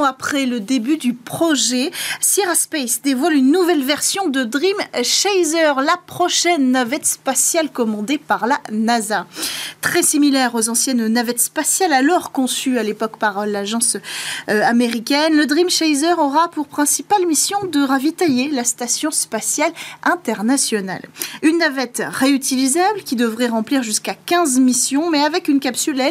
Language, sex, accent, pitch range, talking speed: French, female, French, 230-315 Hz, 140 wpm